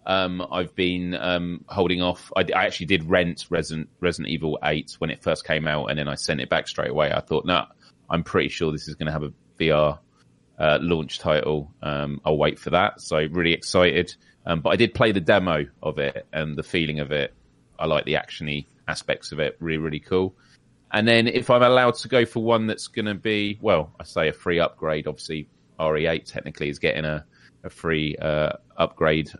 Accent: British